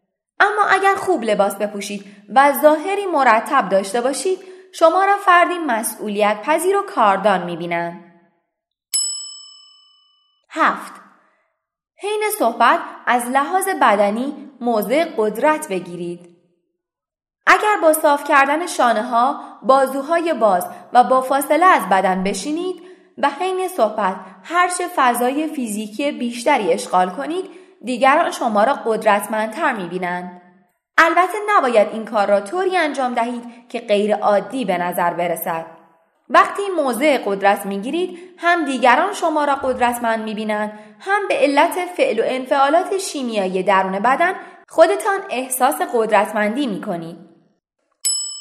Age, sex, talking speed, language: 30-49, female, 115 wpm, Persian